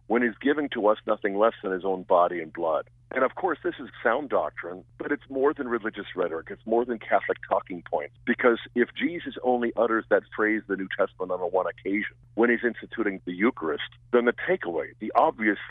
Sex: male